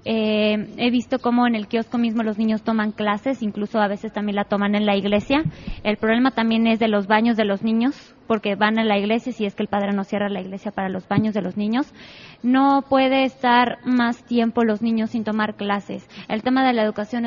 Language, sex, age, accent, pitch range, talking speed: Spanish, female, 20-39, Mexican, 215-250 Hz, 230 wpm